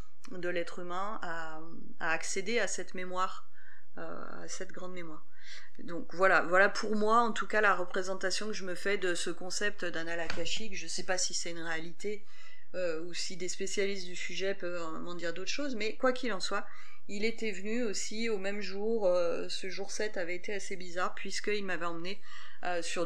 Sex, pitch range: female, 180-215 Hz